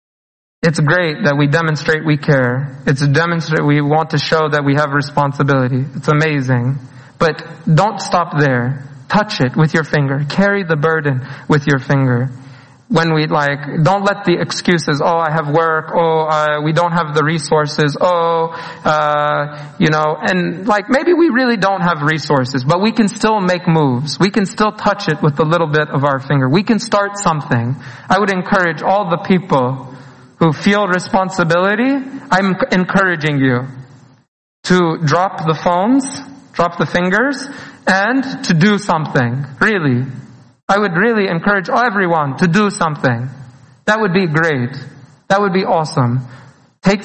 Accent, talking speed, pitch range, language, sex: American, 160 wpm, 145-190 Hz, English, male